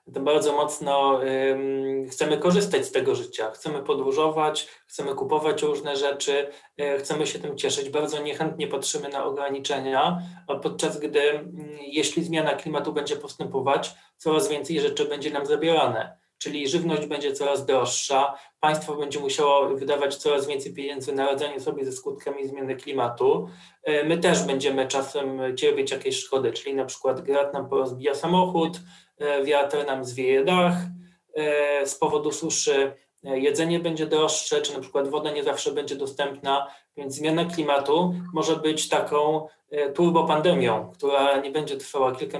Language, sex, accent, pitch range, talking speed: Polish, male, native, 140-185 Hz, 145 wpm